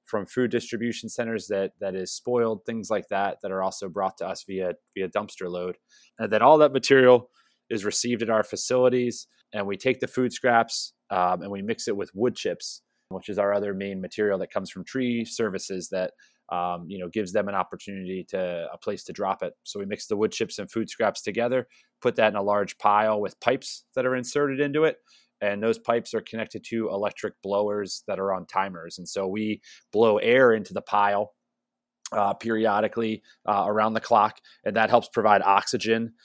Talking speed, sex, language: 205 wpm, male, English